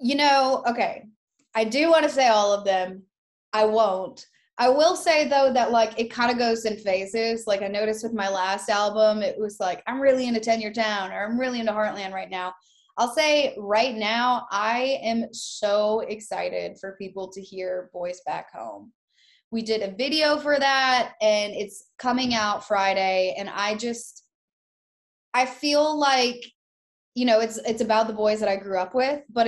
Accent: American